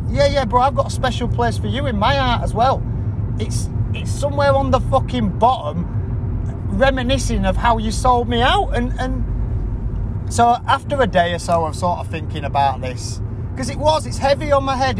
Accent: British